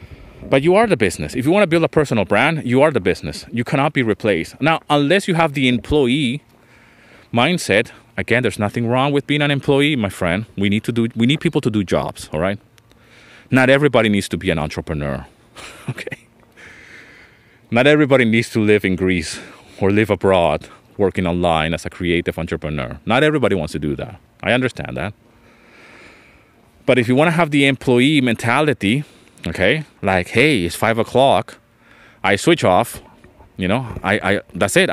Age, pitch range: 30-49, 100-145 Hz